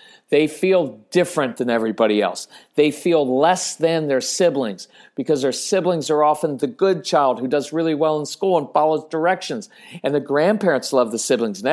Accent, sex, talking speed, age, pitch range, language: American, male, 185 wpm, 50-69, 135-175 Hz, English